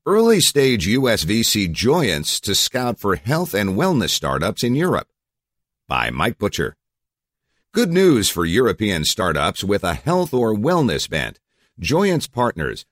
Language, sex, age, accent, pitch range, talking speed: English, male, 50-69, American, 80-115 Hz, 135 wpm